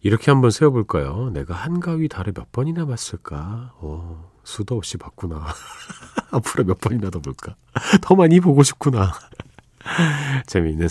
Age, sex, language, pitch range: 40-59, male, Korean, 85-125 Hz